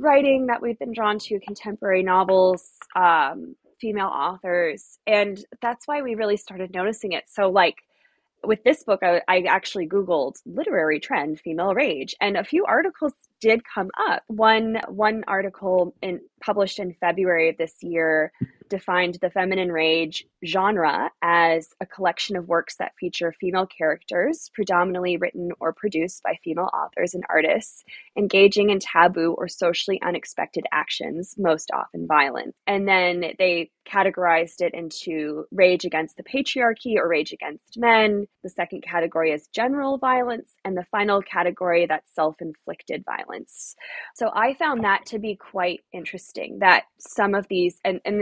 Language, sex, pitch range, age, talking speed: English, female, 175-220 Hz, 20-39, 155 wpm